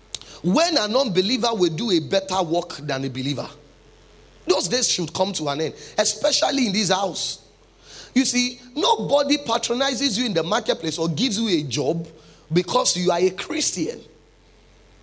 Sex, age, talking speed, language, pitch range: male, 30-49, 160 wpm, English, 175-260 Hz